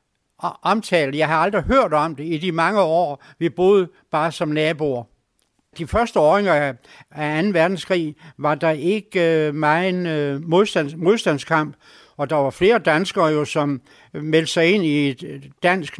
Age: 60-79